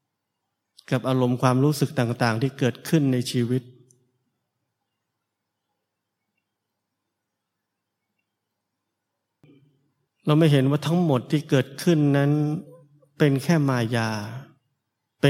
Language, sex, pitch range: Thai, male, 115-140 Hz